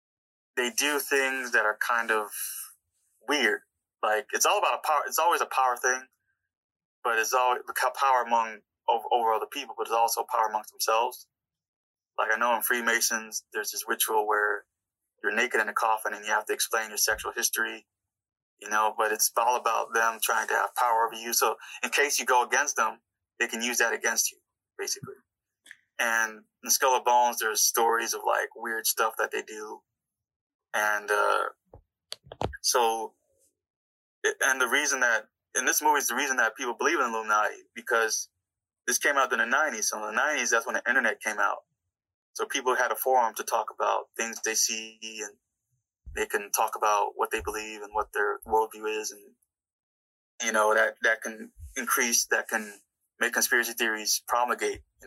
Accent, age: American, 20-39